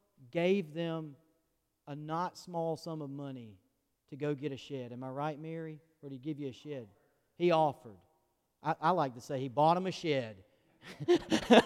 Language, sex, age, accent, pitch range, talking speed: English, male, 40-59, American, 145-180 Hz, 185 wpm